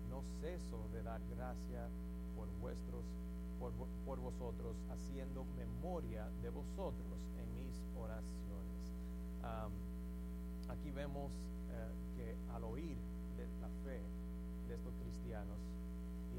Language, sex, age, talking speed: English, male, 40-59, 115 wpm